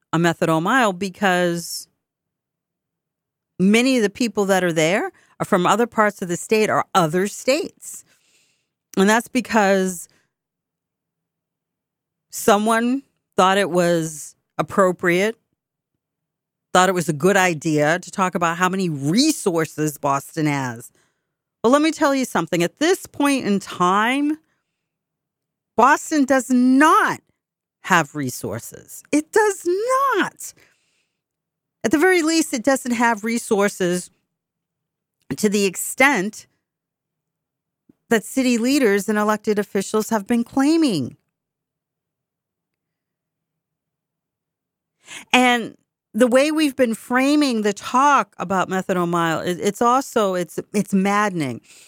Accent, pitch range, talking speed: American, 160-235 Hz, 115 wpm